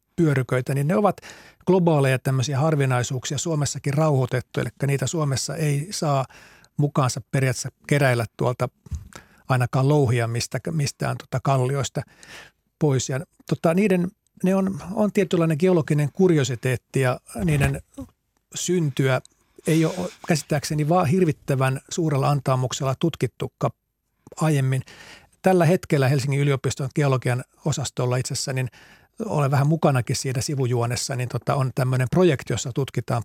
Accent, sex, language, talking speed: native, male, Finnish, 120 wpm